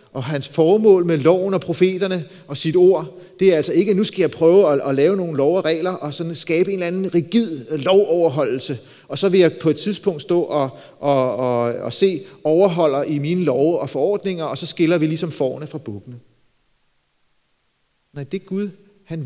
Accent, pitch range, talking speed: native, 130-180 Hz, 205 wpm